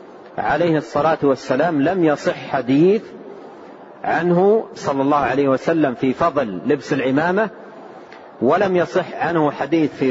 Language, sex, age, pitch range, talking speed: Arabic, male, 40-59, 150-200 Hz, 120 wpm